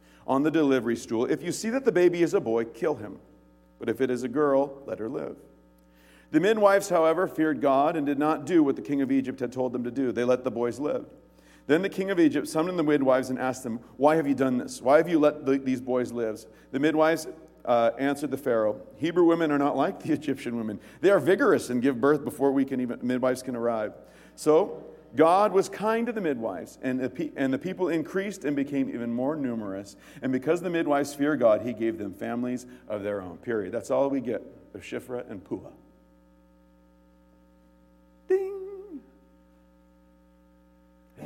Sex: male